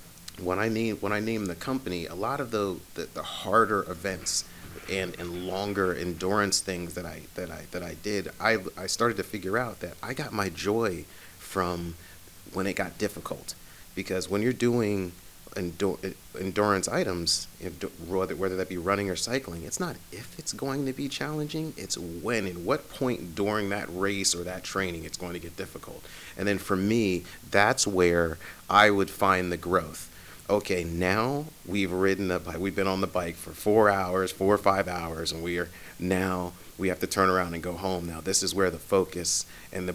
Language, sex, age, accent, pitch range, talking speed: English, male, 30-49, American, 85-100 Hz, 190 wpm